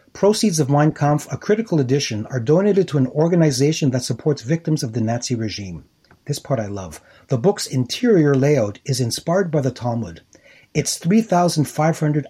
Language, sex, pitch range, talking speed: English, male, 120-150 Hz, 165 wpm